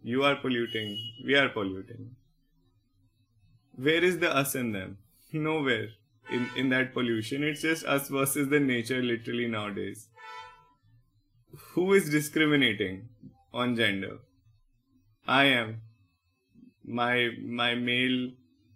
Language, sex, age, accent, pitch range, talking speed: English, male, 20-39, Indian, 110-140 Hz, 110 wpm